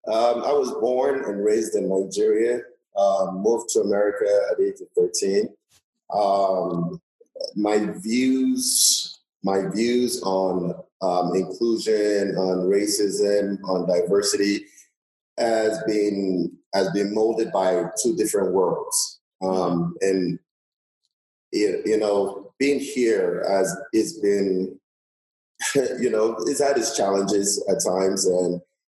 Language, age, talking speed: English, 30-49, 115 wpm